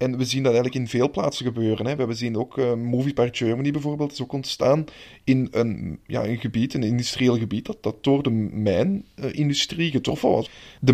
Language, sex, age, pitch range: Dutch, male, 20-39, 120-150 Hz